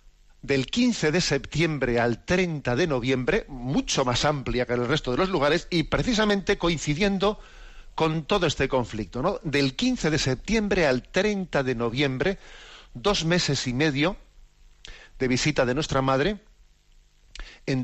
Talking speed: 145 wpm